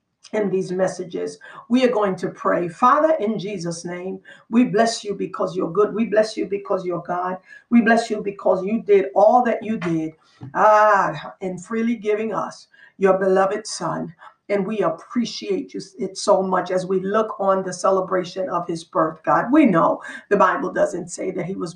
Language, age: English, 50-69